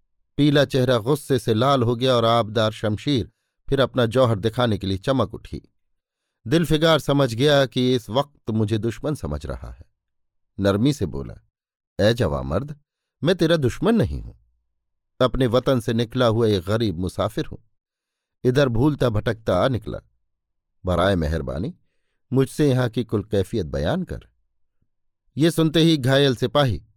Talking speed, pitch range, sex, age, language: 155 wpm, 95-130 Hz, male, 50-69, Hindi